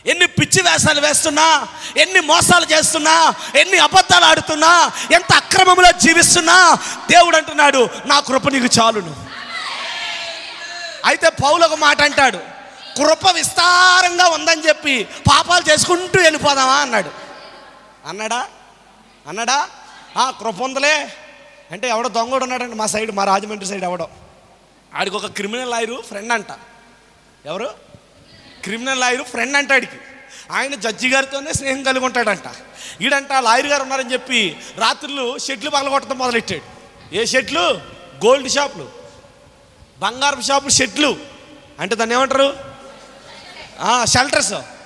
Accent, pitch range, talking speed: native, 250-315 Hz, 110 wpm